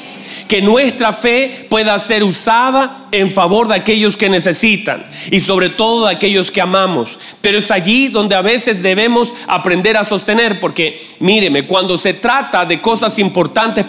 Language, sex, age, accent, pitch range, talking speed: Spanish, male, 40-59, Mexican, 190-230 Hz, 160 wpm